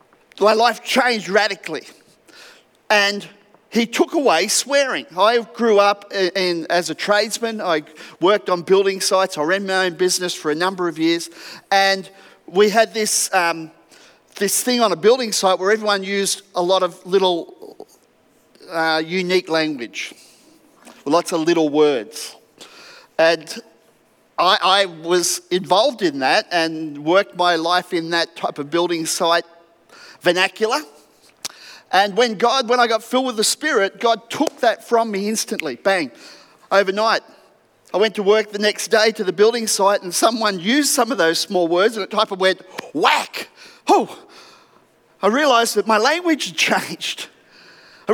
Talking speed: 155 wpm